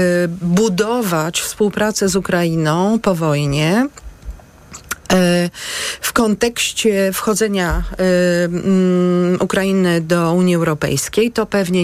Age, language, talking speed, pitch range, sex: 40-59, Polish, 75 wpm, 170-200 Hz, female